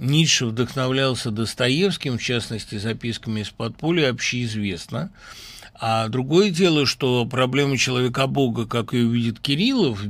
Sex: male